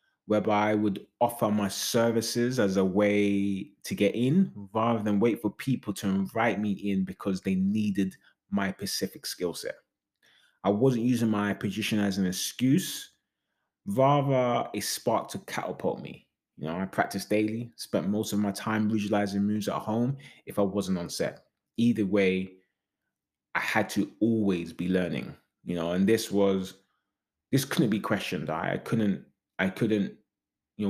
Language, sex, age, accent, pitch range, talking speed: English, male, 20-39, British, 95-115 Hz, 160 wpm